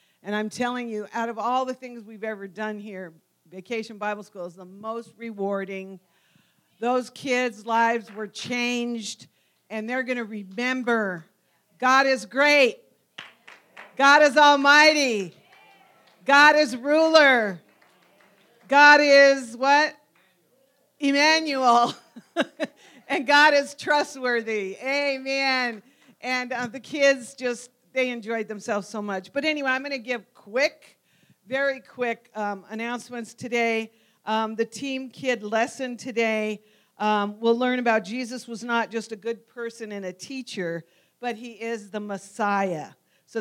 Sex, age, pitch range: female, 50-69, 215-260 Hz